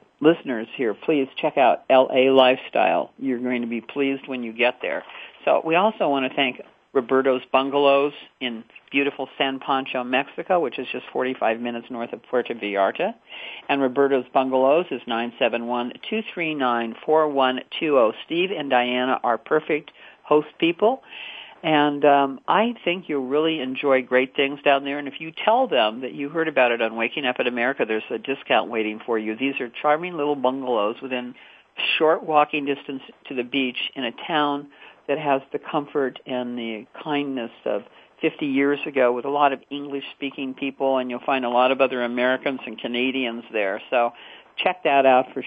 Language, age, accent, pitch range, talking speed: English, 50-69, American, 125-150 Hz, 170 wpm